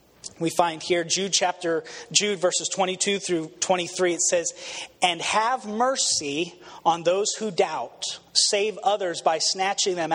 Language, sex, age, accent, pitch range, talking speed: English, male, 30-49, American, 170-220 Hz, 140 wpm